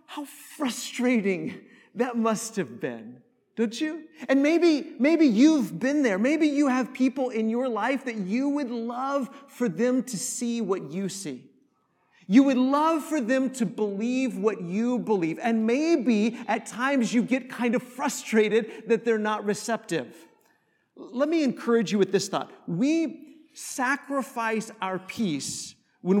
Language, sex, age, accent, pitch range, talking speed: English, male, 40-59, American, 210-270 Hz, 155 wpm